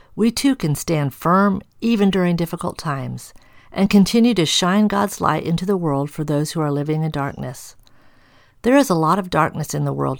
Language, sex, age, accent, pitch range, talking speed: English, female, 50-69, American, 130-190 Hz, 200 wpm